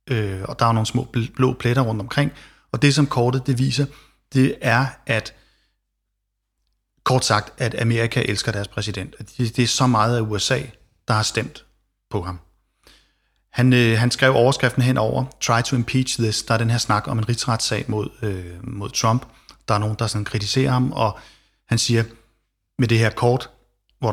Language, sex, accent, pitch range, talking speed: Danish, male, native, 110-130 Hz, 190 wpm